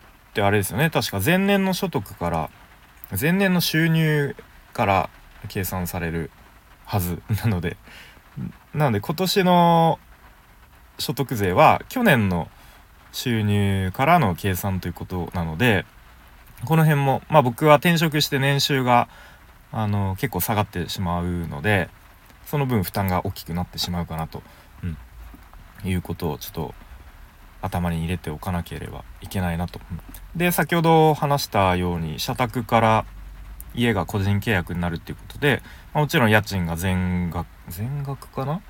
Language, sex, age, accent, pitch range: Japanese, male, 20-39, native, 85-125 Hz